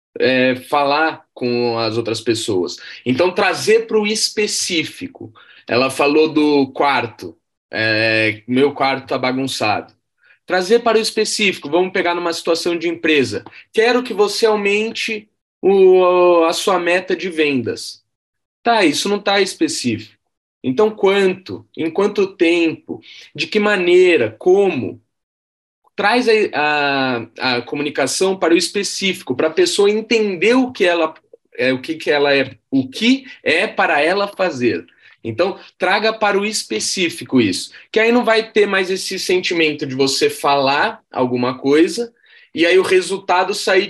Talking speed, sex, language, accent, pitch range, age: 125 wpm, male, Portuguese, Brazilian, 150-215 Hz, 20-39